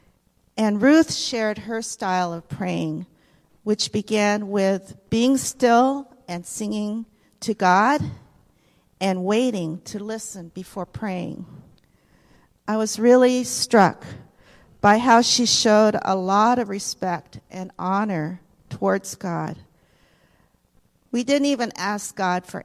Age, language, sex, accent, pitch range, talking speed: 50-69, English, female, American, 190-235 Hz, 115 wpm